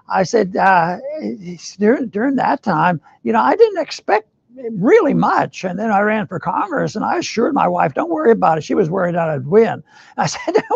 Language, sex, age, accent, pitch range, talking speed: English, male, 60-79, American, 190-235 Hz, 210 wpm